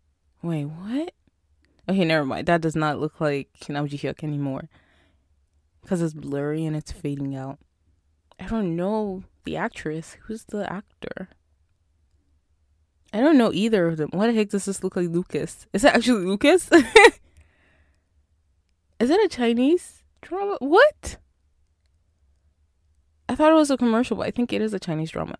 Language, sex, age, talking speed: English, female, 20-39, 160 wpm